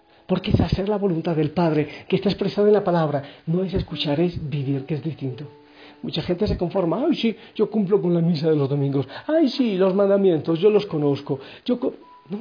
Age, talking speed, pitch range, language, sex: 50-69, 220 wpm, 160-230 Hz, Spanish, male